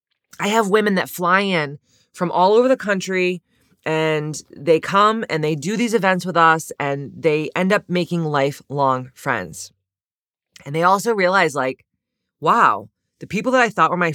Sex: female